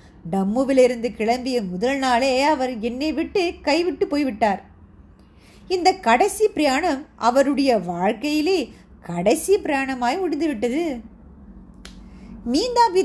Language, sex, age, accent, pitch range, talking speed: Tamil, female, 30-49, native, 200-275 Hz, 85 wpm